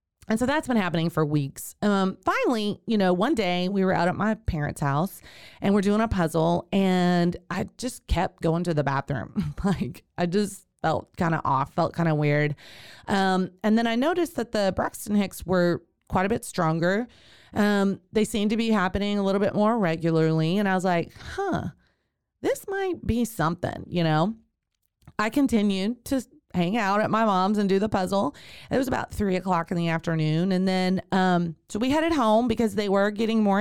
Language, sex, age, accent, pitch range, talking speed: English, female, 30-49, American, 170-215 Hz, 200 wpm